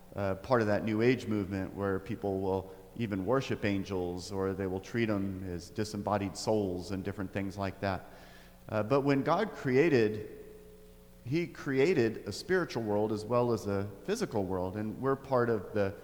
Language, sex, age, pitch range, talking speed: English, male, 40-59, 100-120 Hz, 175 wpm